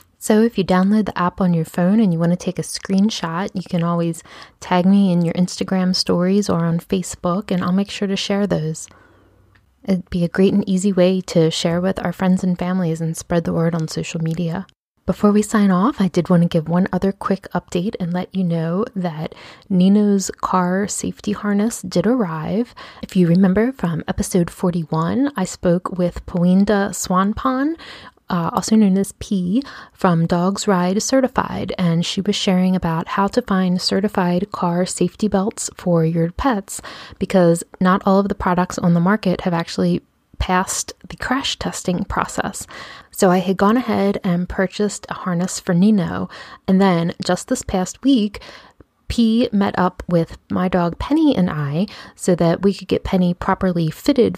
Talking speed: 180 wpm